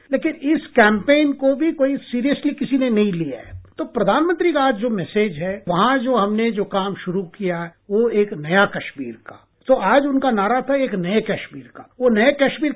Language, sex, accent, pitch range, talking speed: English, male, Indian, 205-275 Hz, 200 wpm